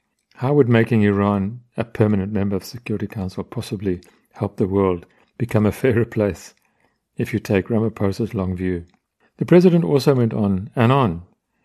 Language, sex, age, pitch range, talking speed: English, male, 50-69, 100-120 Hz, 165 wpm